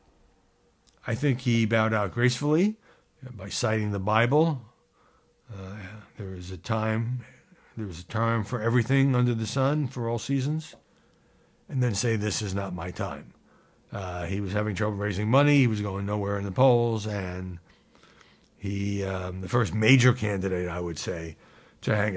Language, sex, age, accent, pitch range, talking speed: English, male, 60-79, American, 105-135 Hz, 160 wpm